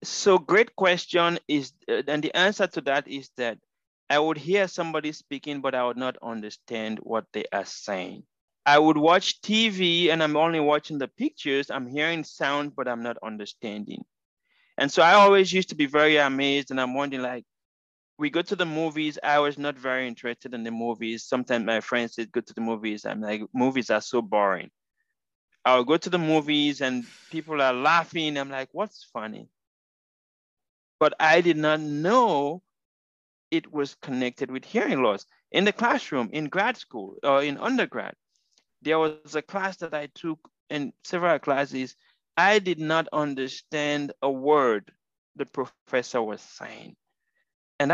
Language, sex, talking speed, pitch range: English, male, 170 wpm, 130-170 Hz